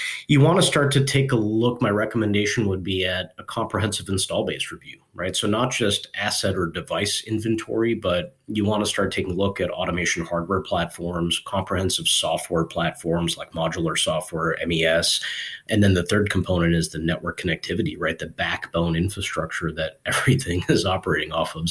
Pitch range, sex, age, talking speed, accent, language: 90-115 Hz, male, 30-49, 175 wpm, American, English